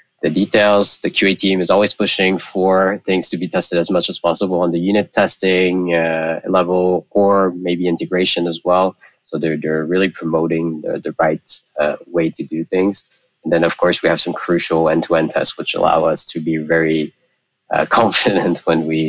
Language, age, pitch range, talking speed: English, 20-39, 80-95 Hz, 190 wpm